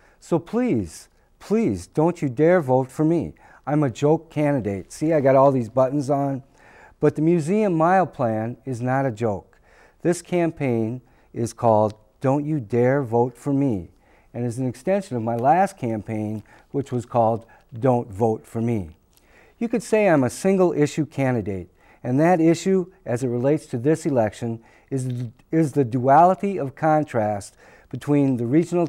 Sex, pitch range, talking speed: male, 115-155 Hz, 165 wpm